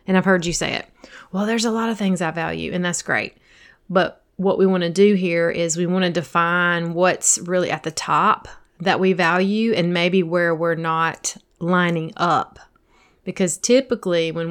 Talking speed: 195 wpm